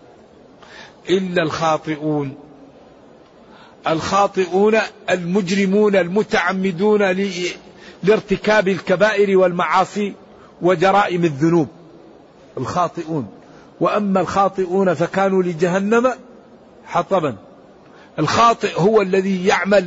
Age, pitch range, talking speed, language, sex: 50-69, 165-195 Hz, 60 wpm, Arabic, male